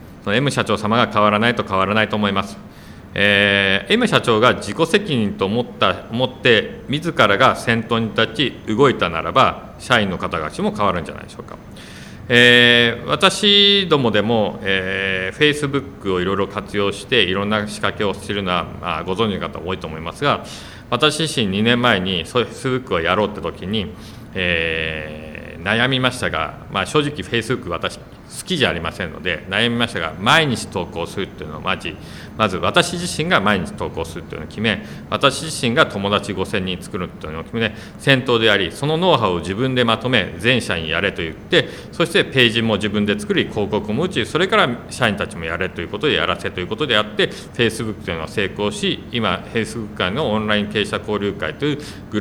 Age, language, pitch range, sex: 40-59, Japanese, 95-120 Hz, male